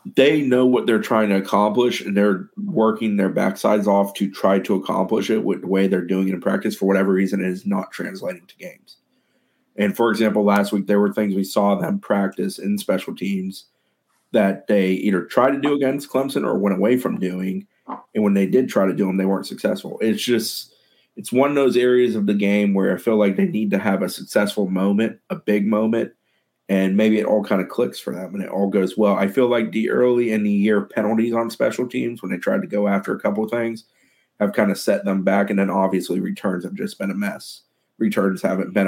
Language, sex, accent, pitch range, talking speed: English, male, American, 95-115 Hz, 235 wpm